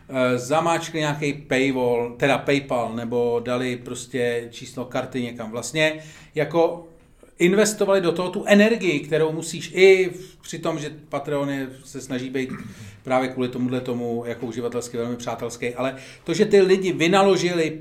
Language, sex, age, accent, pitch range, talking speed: Czech, male, 40-59, native, 125-180 Hz, 140 wpm